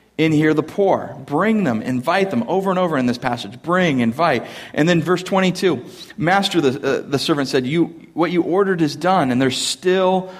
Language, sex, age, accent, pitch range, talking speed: English, male, 40-59, American, 140-170 Hz, 195 wpm